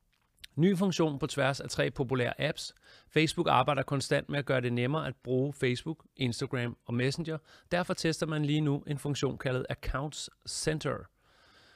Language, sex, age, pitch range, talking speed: Danish, male, 30-49, 125-145 Hz, 165 wpm